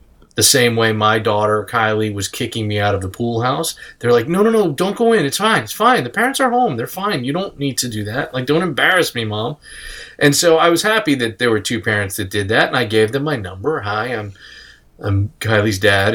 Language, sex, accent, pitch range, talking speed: English, male, American, 100-145 Hz, 250 wpm